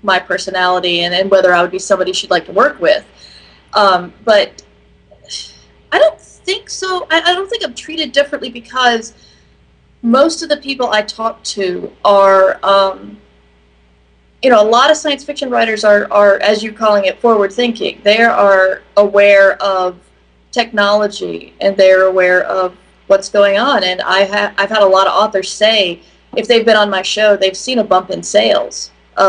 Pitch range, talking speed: 180-240 Hz, 180 wpm